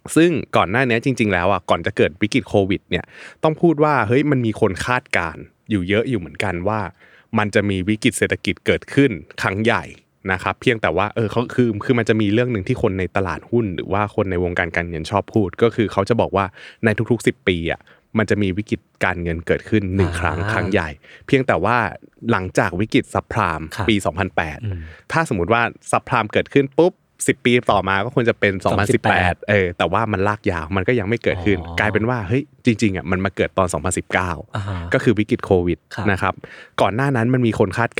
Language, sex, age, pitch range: Thai, male, 20-39, 95-115 Hz